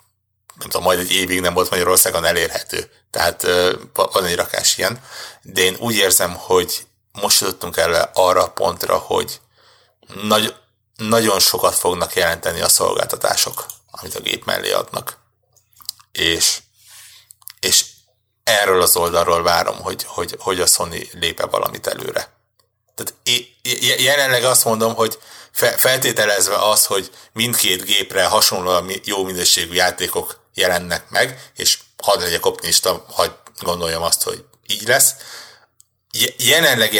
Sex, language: male, Hungarian